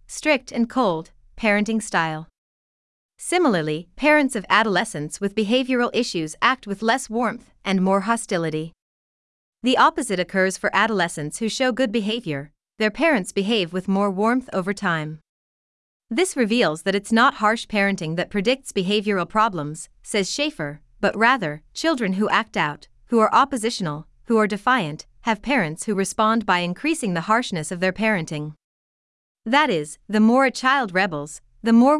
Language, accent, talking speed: English, American, 150 wpm